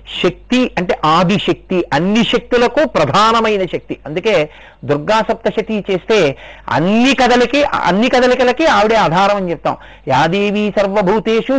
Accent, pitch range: native, 175-230 Hz